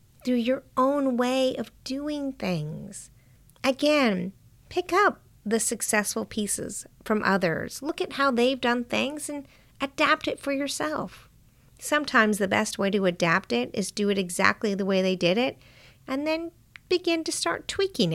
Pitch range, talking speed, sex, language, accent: 195-280 Hz, 160 wpm, female, English, American